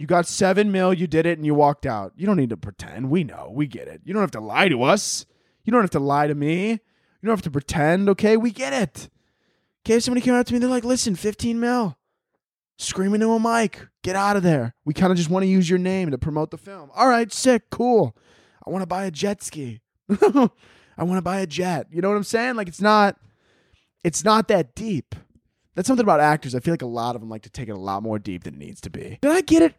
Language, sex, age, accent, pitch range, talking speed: English, male, 20-39, American, 130-205 Hz, 270 wpm